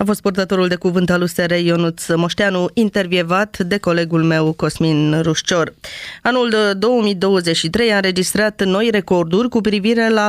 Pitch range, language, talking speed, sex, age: 175-225 Hz, Romanian, 140 wpm, female, 20-39